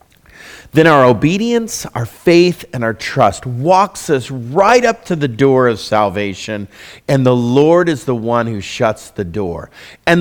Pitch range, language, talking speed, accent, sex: 105-160 Hz, English, 165 wpm, American, male